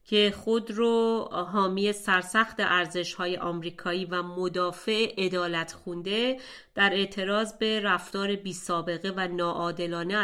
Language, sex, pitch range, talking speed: Persian, female, 180-220 Hz, 110 wpm